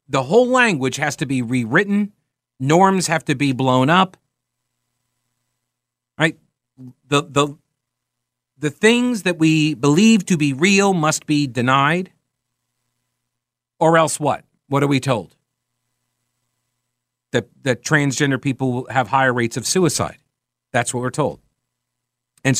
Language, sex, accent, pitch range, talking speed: English, male, American, 125-150 Hz, 125 wpm